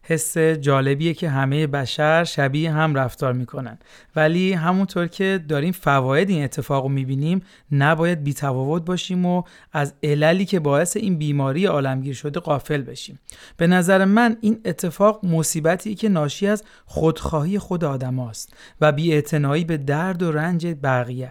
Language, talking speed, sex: Persian, 140 wpm, male